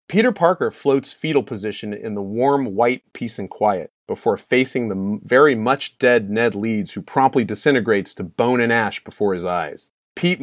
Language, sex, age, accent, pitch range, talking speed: English, male, 30-49, American, 105-135 Hz, 180 wpm